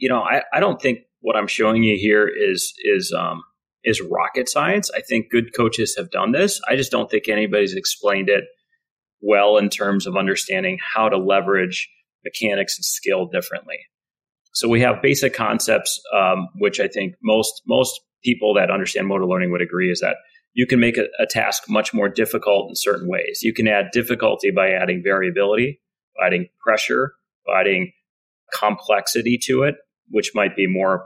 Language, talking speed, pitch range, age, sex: English, 180 wpm, 100-145 Hz, 30-49, male